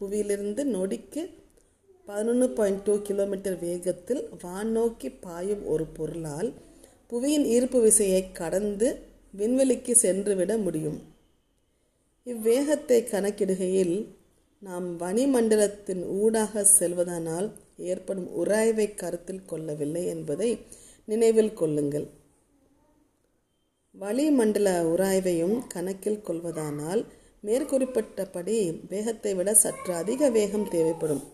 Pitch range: 180-225 Hz